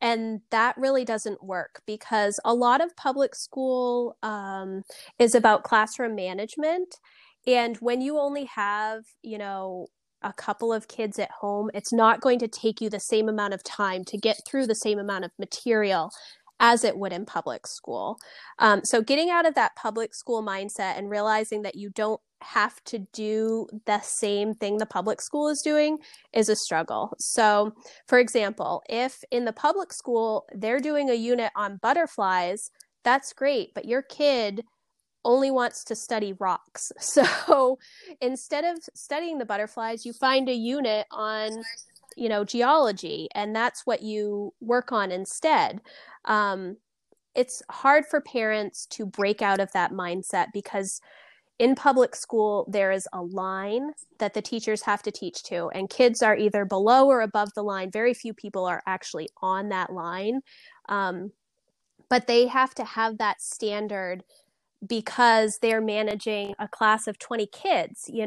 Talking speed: 165 wpm